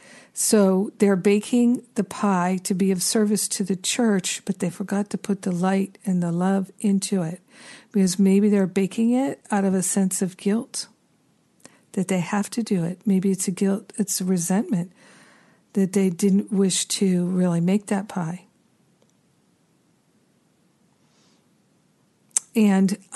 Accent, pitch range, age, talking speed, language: American, 185-220 Hz, 50-69, 150 wpm, English